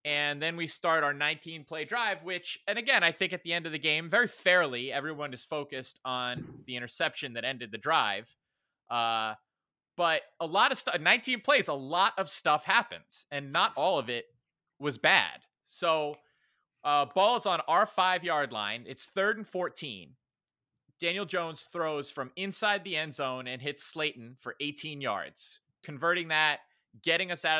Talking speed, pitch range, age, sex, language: 175 wpm, 140-175 Hz, 30-49, male, English